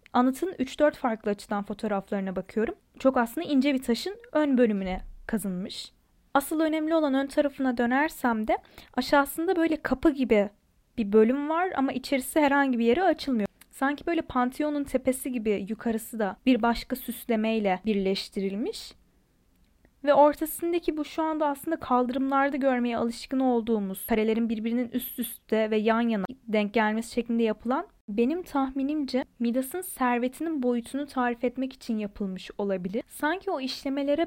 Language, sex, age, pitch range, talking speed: Turkish, female, 10-29, 230-280 Hz, 140 wpm